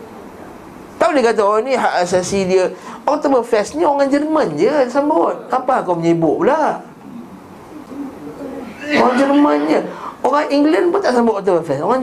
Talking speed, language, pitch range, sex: 135 wpm, Malay, 170-230 Hz, male